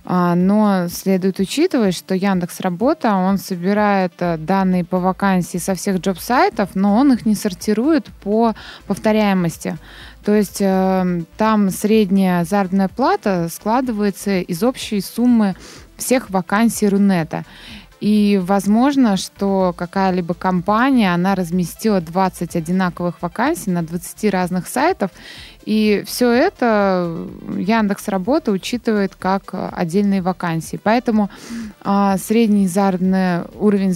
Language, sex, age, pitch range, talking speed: Russian, female, 20-39, 180-215 Hz, 105 wpm